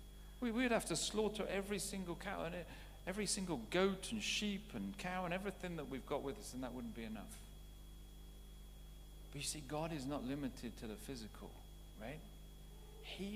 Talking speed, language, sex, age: 175 wpm, English, male, 40-59